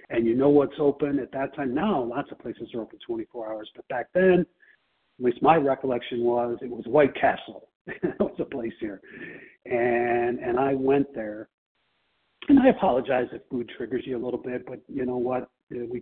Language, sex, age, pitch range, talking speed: English, male, 50-69, 120-165 Hz, 200 wpm